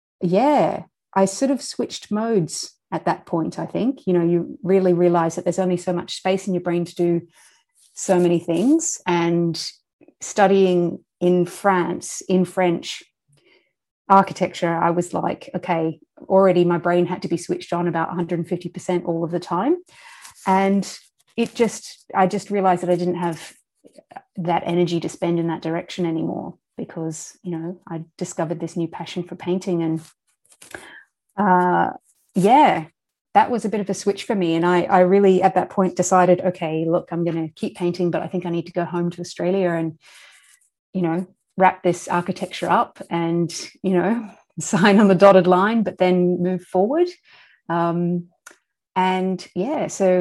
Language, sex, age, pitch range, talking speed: English, female, 30-49, 175-195 Hz, 170 wpm